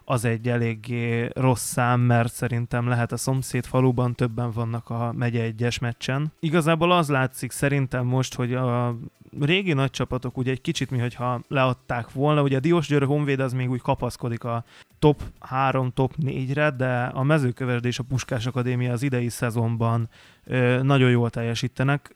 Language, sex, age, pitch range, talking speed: Hungarian, male, 20-39, 120-130 Hz, 155 wpm